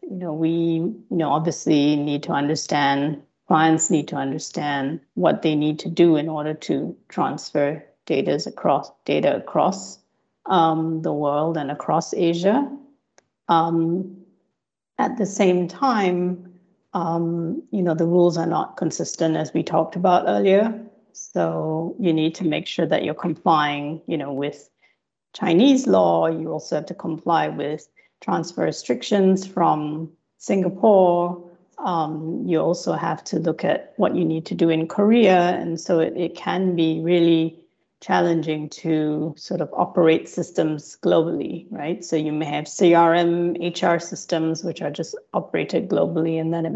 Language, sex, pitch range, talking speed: English, female, 155-180 Hz, 150 wpm